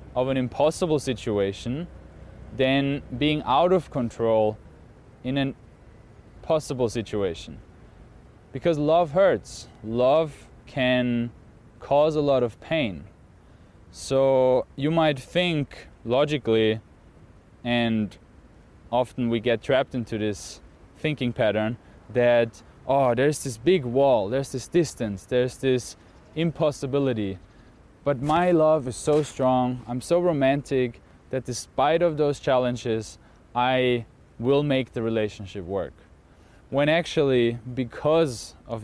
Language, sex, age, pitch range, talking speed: English, male, 20-39, 105-135 Hz, 115 wpm